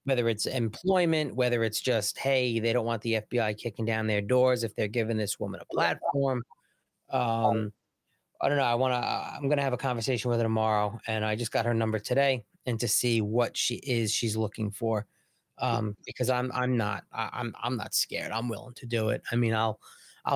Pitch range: 110-130 Hz